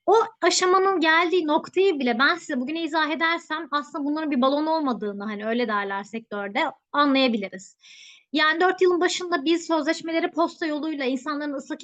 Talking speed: 150 wpm